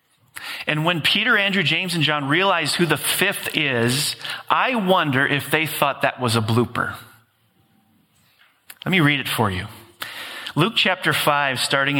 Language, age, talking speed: English, 40-59, 155 wpm